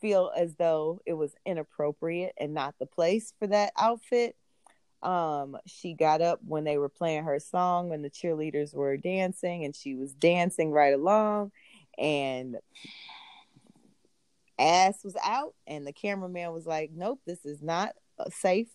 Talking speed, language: 155 wpm, English